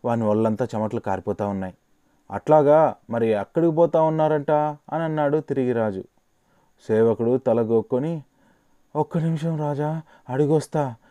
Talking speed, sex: 115 wpm, male